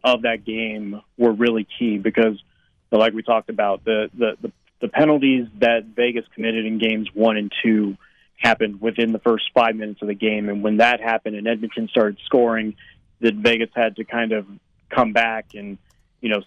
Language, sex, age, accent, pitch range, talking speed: English, male, 30-49, American, 110-125 Hz, 185 wpm